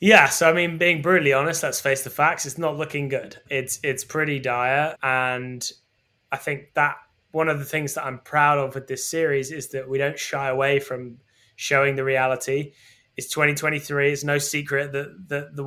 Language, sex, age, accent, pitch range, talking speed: English, male, 10-29, British, 135-160 Hz, 200 wpm